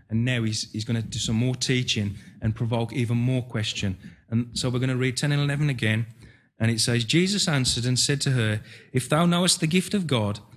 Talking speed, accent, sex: 235 wpm, British, male